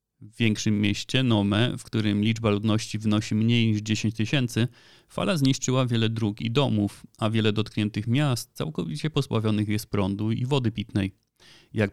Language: Polish